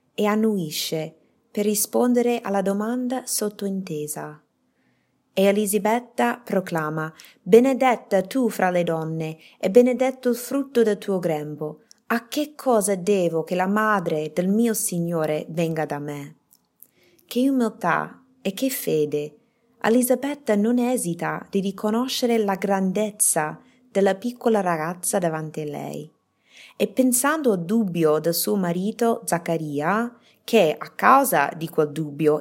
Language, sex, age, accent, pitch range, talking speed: Italian, female, 20-39, native, 165-235 Hz, 125 wpm